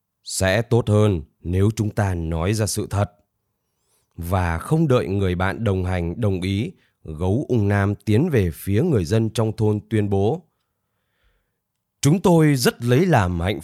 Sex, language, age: male, Vietnamese, 20-39